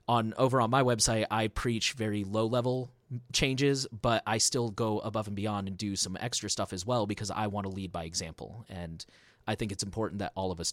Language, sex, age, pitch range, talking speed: English, male, 20-39, 100-125 Hz, 220 wpm